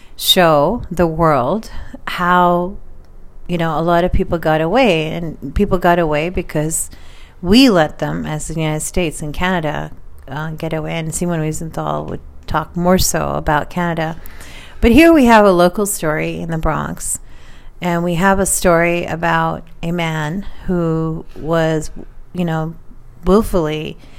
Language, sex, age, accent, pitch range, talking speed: English, female, 40-59, American, 155-180 Hz, 150 wpm